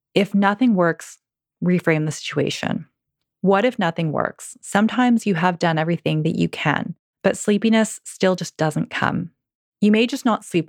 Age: 20-39